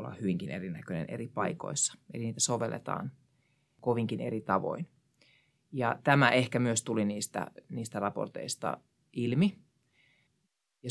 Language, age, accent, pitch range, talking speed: Finnish, 30-49, native, 105-135 Hz, 115 wpm